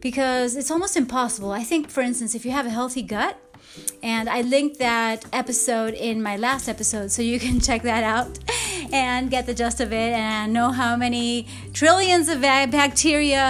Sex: female